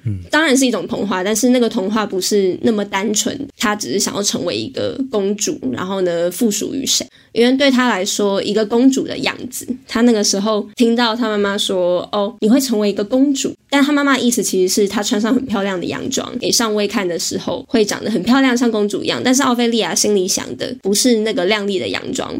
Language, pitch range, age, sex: Chinese, 200-250 Hz, 20-39, female